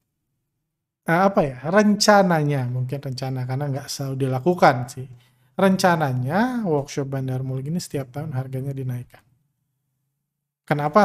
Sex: male